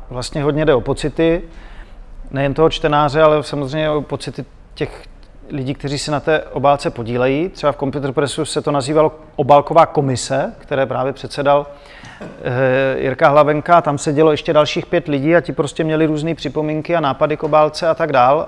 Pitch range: 135-165 Hz